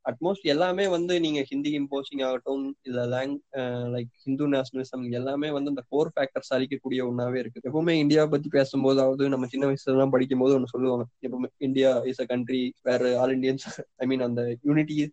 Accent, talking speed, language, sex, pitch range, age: native, 65 wpm, Tamil, male, 130-150 Hz, 20-39